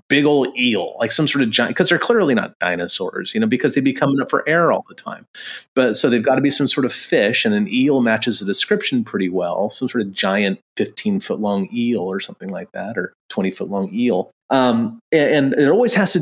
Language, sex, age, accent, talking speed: English, male, 30-49, American, 235 wpm